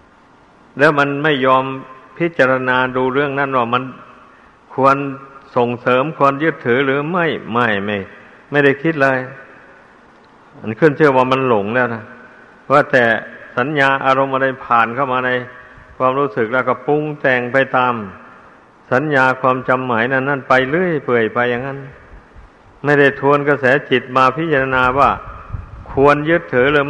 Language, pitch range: Thai, 120-140 Hz